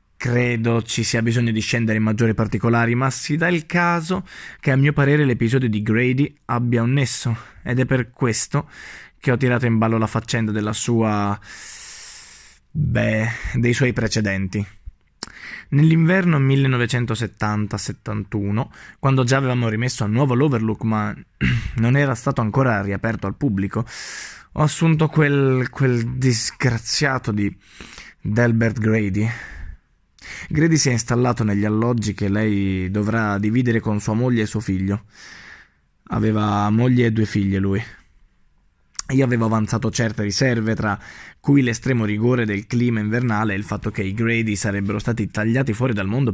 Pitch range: 100-125 Hz